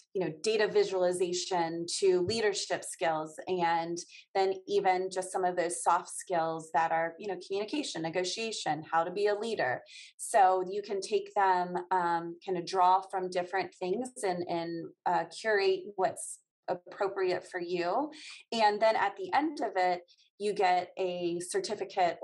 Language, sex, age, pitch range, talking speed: English, female, 30-49, 175-205 Hz, 155 wpm